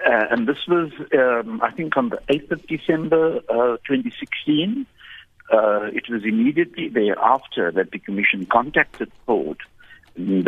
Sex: male